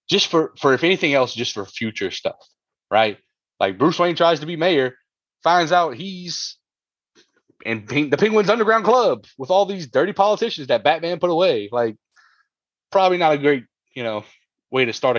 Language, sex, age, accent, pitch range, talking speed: English, male, 30-49, American, 105-145 Hz, 180 wpm